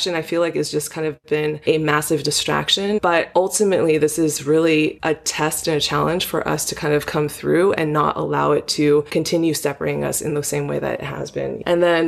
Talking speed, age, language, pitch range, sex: 230 wpm, 20-39, English, 155-175 Hz, female